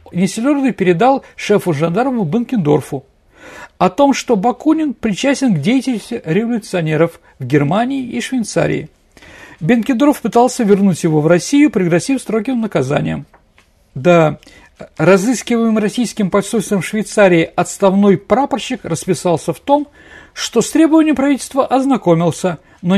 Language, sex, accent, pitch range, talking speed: Russian, male, native, 170-245 Hz, 105 wpm